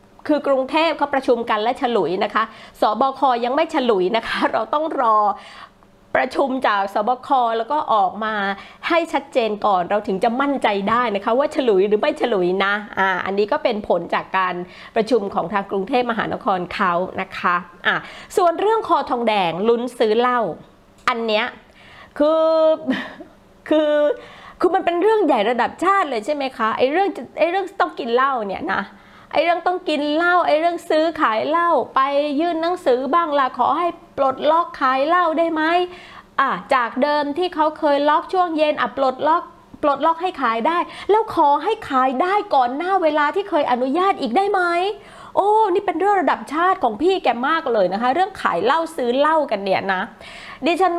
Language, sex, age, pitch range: Thai, female, 20-39, 245-340 Hz